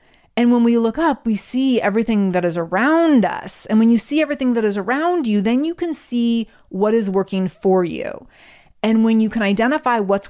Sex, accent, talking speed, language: female, American, 210 wpm, English